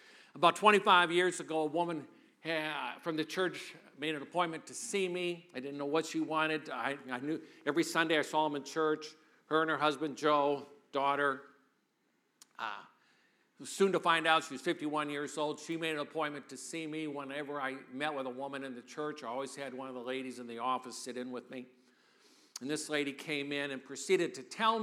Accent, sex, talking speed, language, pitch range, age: American, male, 210 wpm, English, 145-185 Hz, 50-69